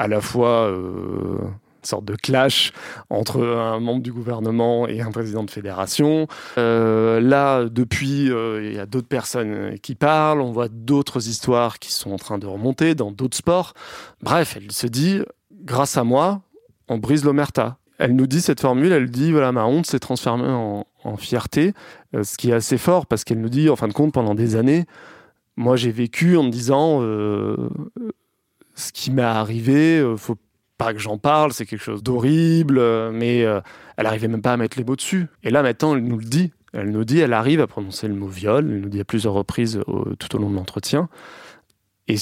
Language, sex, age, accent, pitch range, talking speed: French, male, 20-39, French, 110-140 Hz, 215 wpm